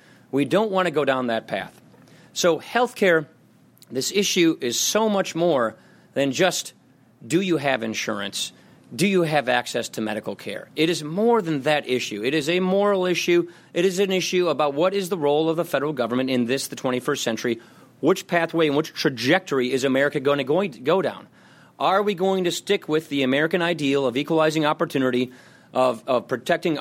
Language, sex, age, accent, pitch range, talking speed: English, male, 30-49, American, 130-170 Hz, 190 wpm